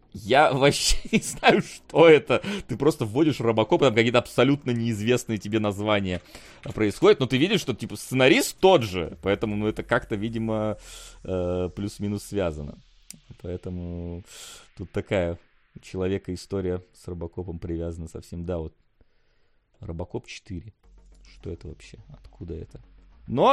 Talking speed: 140 wpm